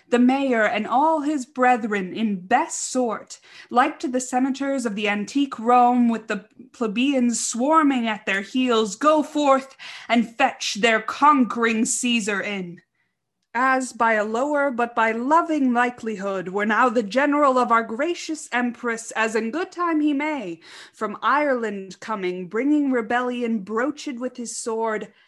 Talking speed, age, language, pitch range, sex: 150 wpm, 20-39, English, 220-280 Hz, female